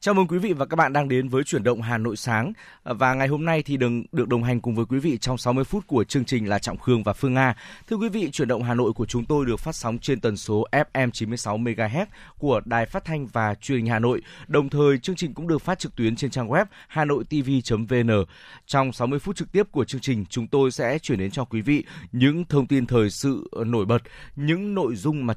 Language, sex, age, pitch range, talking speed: Vietnamese, male, 20-39, 110-145 Hz, 270 wpm